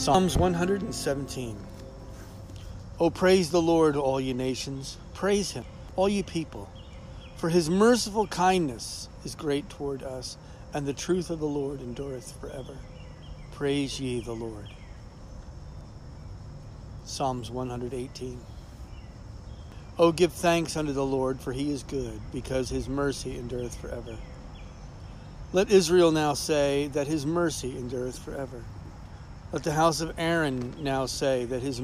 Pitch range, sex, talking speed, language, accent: 120-160 Hz, male, 135 wpm, English, American